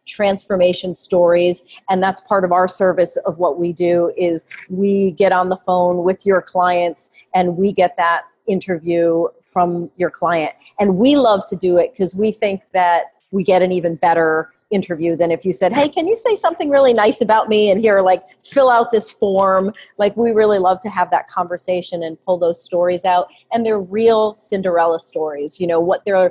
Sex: female